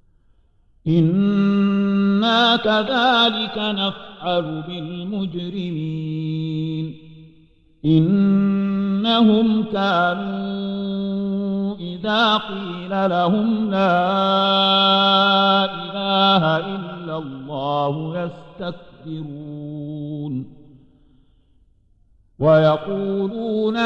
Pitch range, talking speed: 145-195 Hz, 40 wpm